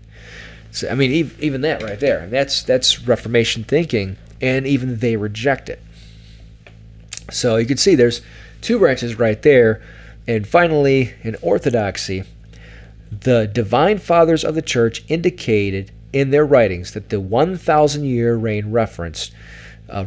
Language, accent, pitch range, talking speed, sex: English, American, 110-140 Hz, 135 wpm, male